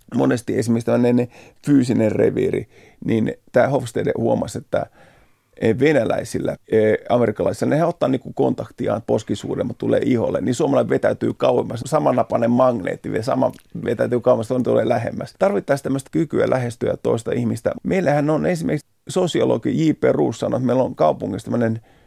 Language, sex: Finnish, male